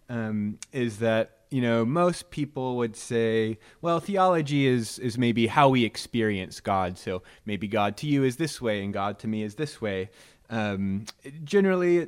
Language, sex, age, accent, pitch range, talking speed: English, male, 30-49, American, 110-135 Hz, 175 wpm